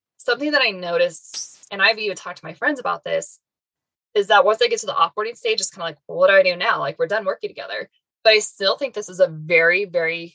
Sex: female